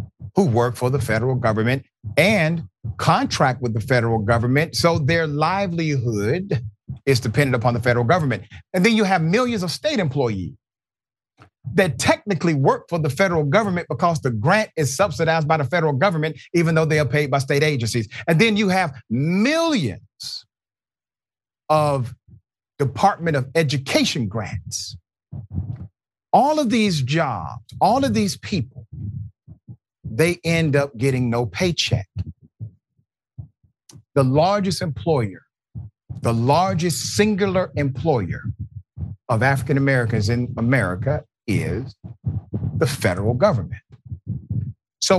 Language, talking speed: English, 125 wpm